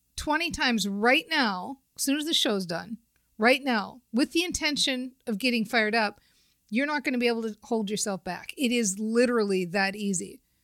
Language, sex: English, female